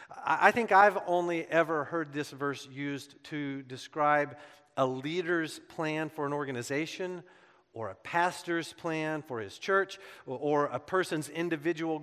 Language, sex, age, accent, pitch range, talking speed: English, male, 40-59, American, 135-165 Hz, 140 wpm